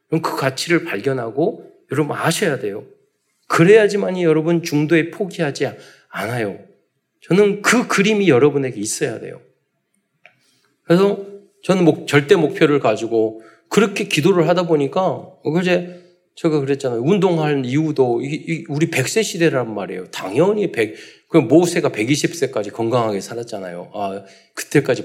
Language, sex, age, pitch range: Korean, male, 40-59, 130-185 Hz